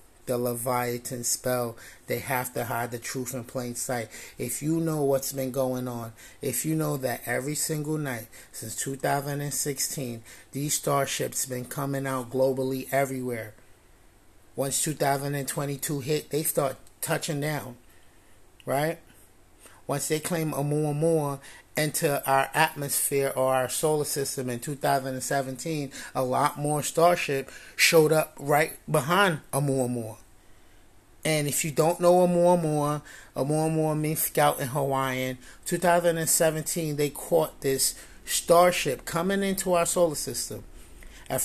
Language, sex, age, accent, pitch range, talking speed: English, male, 30-49, American, 125-155 Hz, 150 wpm